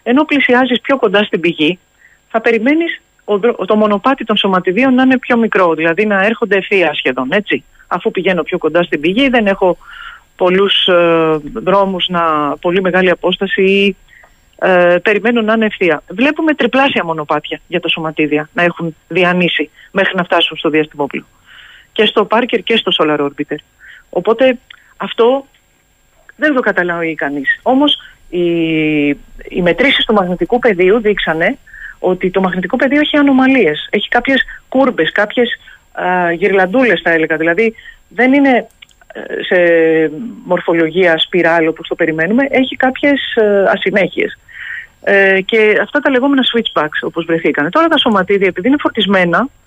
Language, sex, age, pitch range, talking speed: Greek, female, 40-59, 175-260 Hz, 145 wpm